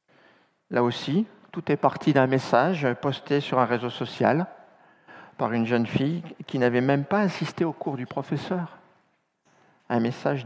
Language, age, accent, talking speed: French, 50-69, French, 155 wpm